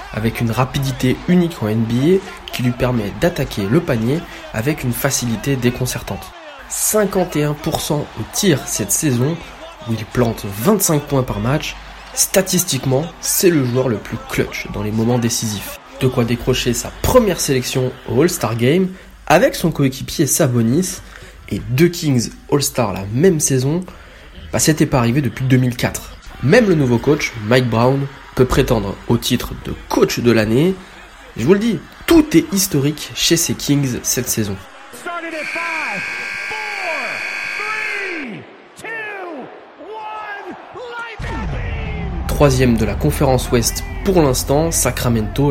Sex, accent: male, French